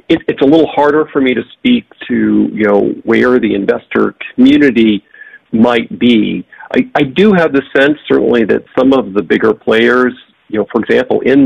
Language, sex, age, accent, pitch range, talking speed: English, male, 50-69, American, 110-145 Hz, 185 wpm